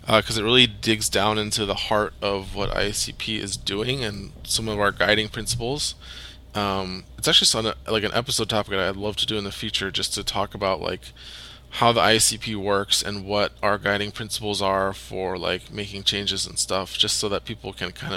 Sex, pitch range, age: male, 95-110 Hz, 20-39